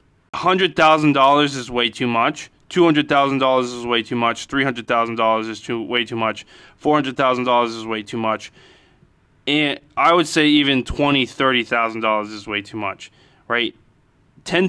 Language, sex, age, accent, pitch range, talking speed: English, male, 20-39, American, 120-150 Hz, 190 wpm